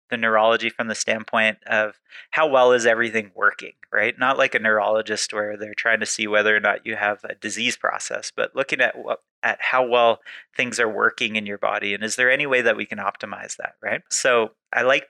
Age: 30-49